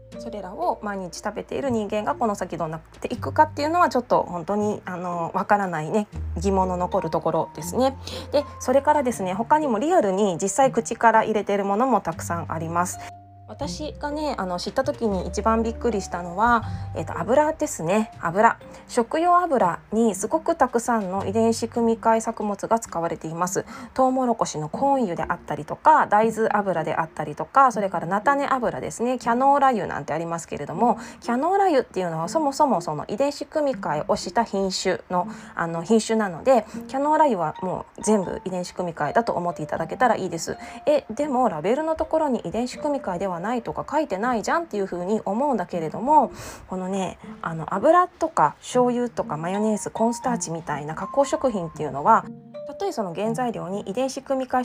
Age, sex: 20-39, female